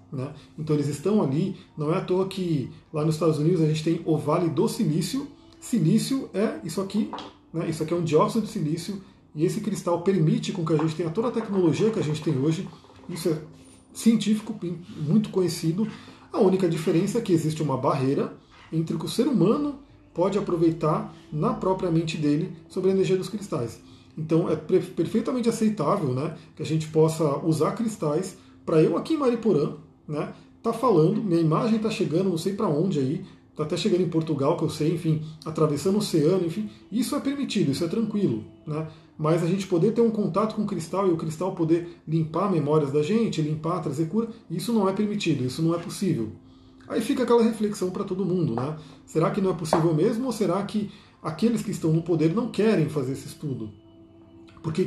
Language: Portuguese